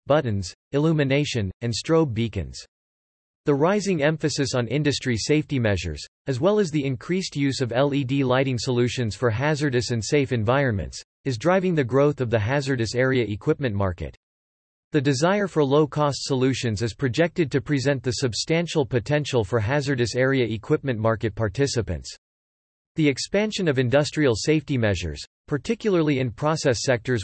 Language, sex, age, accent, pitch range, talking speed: English, male, 40-59, American, 115-150 Hz, 145 wpm